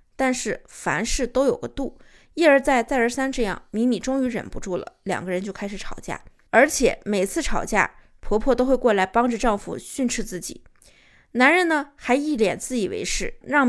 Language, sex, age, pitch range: Chinese, female, 20-39, 210-270 Hz